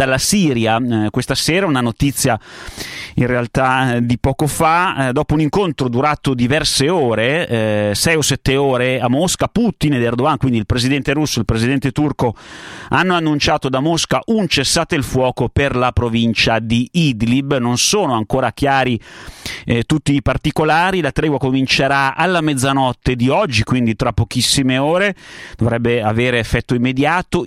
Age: 30-49